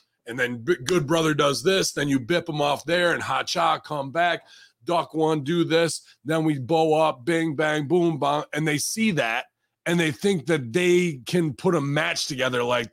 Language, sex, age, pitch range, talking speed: English, male, 30-49, 125-175 Hz, 205 wpm